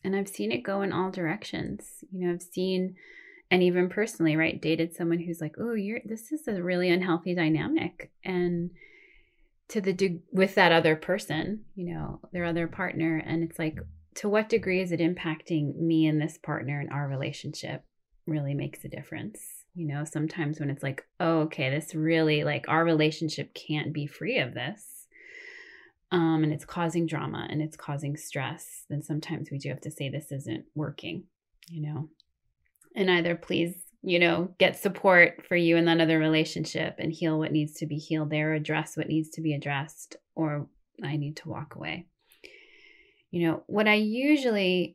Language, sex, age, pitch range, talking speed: English, female, 20-39, 155-190 Hz, 185 wpm